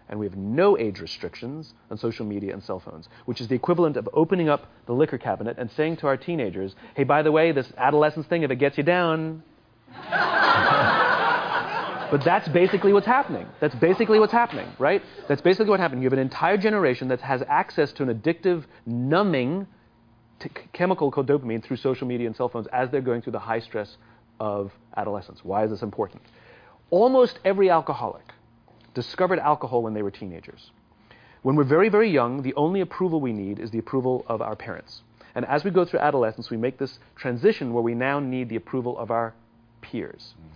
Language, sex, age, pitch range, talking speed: English, male, 30-49, 115-155 Hz, 195 wpm